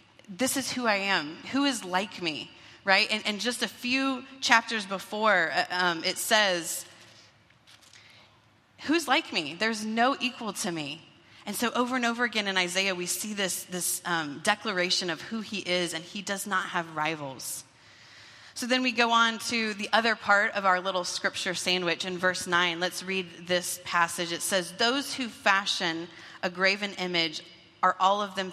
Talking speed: 180 wpm